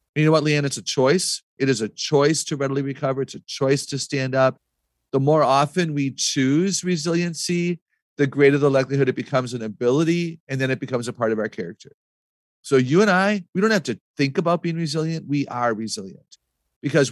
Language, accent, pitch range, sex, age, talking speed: English, American, 115-145 Hz, male, 40-59, 205 wpm